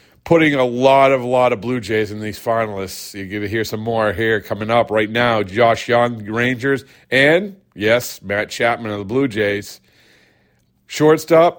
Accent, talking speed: American, 180 wpm